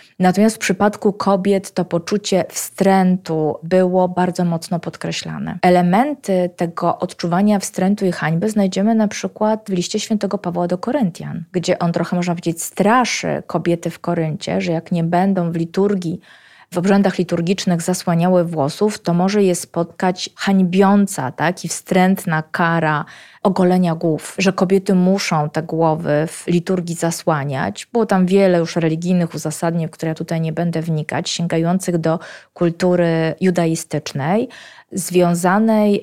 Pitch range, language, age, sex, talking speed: 165-190 Hz, Polish, 20-39, female, 135 wpm